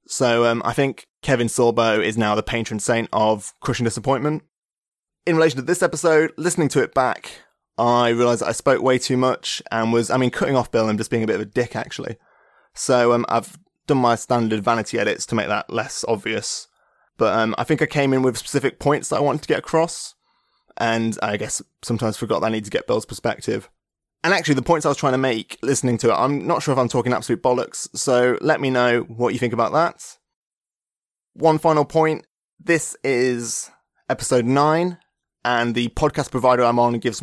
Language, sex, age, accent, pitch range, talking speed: English, male, 20-39, British, 115-145 Hz, 210 wpm